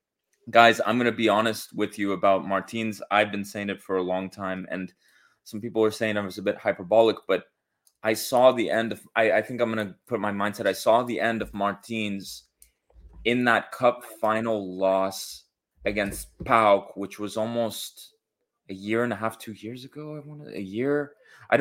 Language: English